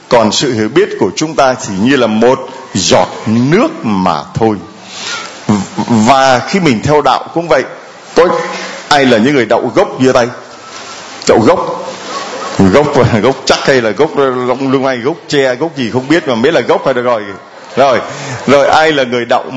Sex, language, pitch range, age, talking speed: male, Vietnamese, 120-155 Hz, 20-39, 185 wpm